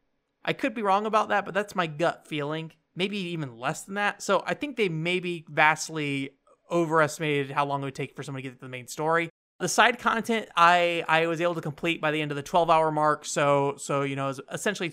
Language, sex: English, male